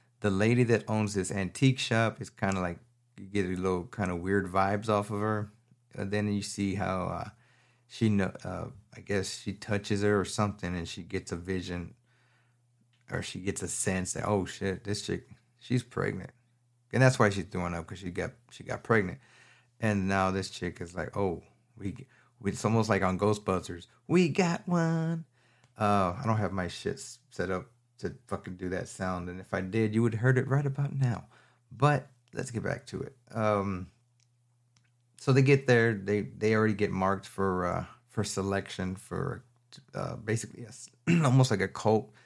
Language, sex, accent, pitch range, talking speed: English, male, American, 95-120 Hz, 190 wpm